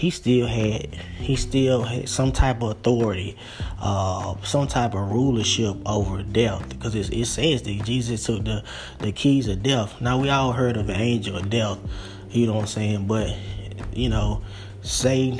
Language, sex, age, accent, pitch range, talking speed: English, male, 20-39, American, 100-125 Hz, 185 wpm